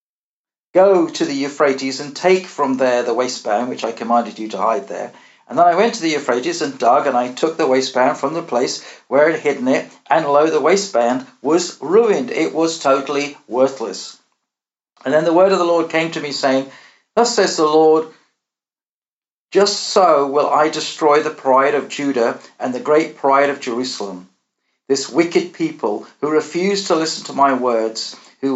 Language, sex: English, male